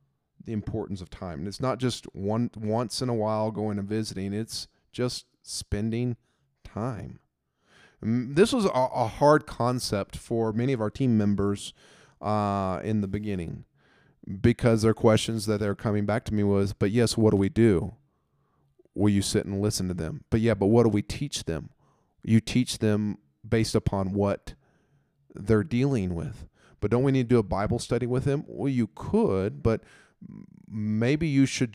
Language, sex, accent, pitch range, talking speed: English, male, American, 105-125 Hz, 180 wpm